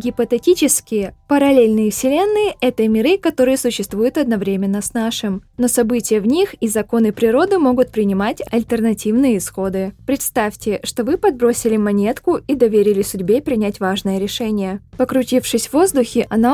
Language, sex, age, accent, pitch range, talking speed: Russian, female, 20-39, native, 210-265 Hz, 130 wpm